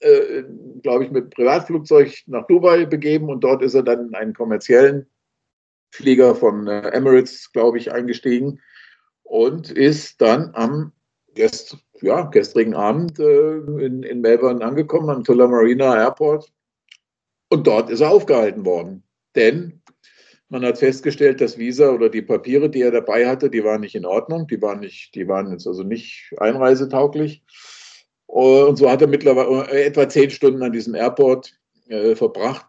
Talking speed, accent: 145 wpm, German